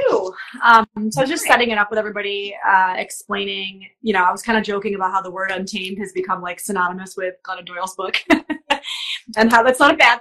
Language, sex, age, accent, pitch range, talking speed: English, female, 30-49, American, 185-230 Hz, 225 wpm